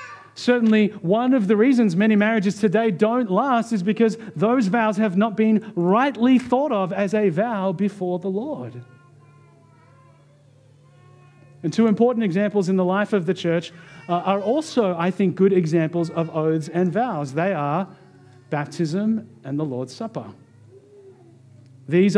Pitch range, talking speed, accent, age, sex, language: 160-225 Hz, 145 wpm, Australian, 40-59, male, English